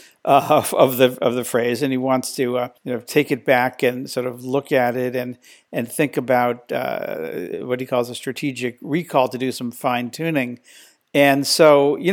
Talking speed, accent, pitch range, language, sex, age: 210 wpm, American, 125-150 Hz, English, male, 50-69